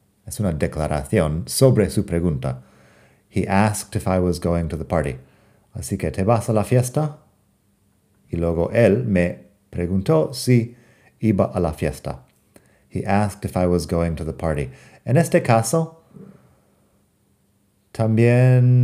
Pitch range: 85-110 Hz